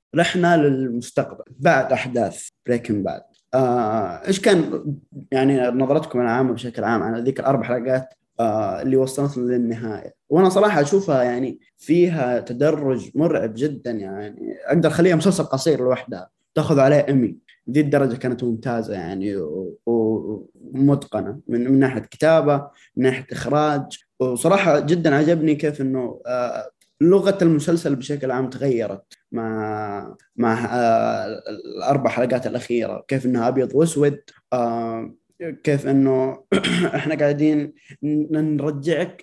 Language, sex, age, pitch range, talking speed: Arabic, male, 20-39, 125-155 Hz, 125 wpm